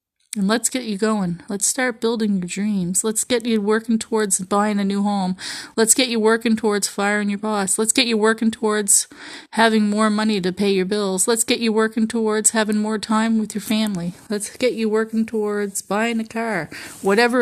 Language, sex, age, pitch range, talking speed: English, female, 30-49, 195-230 Hz, 205 wpm